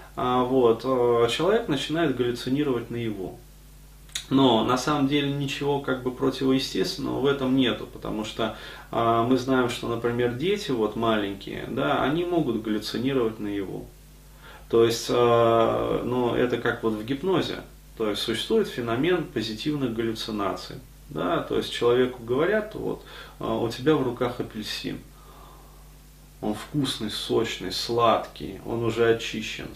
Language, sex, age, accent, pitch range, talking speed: Russian, male, 30-49, native, 110-130 Hz, 135 wpm